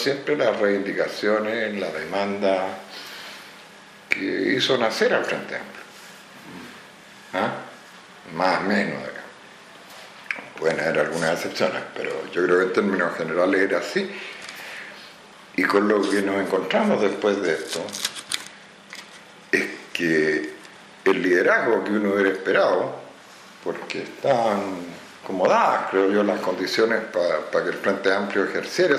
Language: Spanish